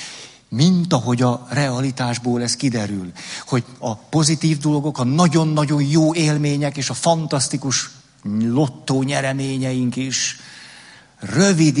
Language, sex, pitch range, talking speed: Hungarian, male, 120-150 Hz, 105 wpm